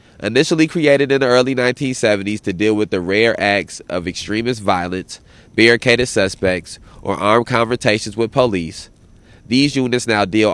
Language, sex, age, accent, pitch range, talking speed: English, male, 30-49, American, 95-125 Hz, 150 wpm